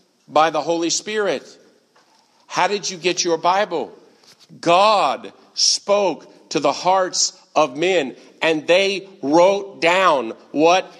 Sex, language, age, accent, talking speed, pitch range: male, English, 50-69, American, 120 wpm, 125-185 Hz